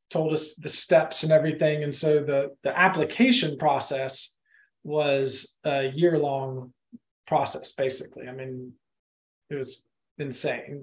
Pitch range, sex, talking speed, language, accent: 140-175 Hz, male, 125 wpm, English, American